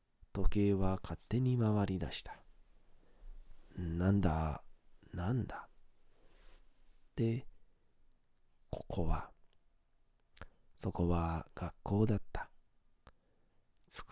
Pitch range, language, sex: 85-110 Hz, Japanese, male